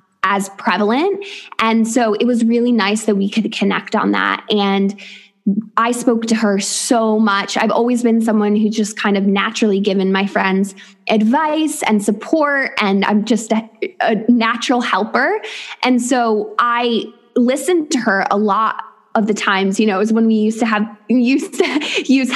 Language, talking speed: English, 175 wpm